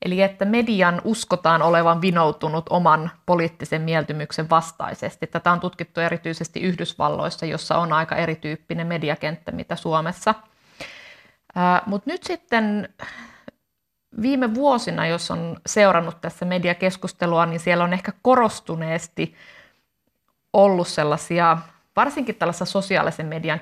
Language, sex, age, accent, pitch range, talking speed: Finnish, female, 50-69, native, 160-180 Hz, 110 wpm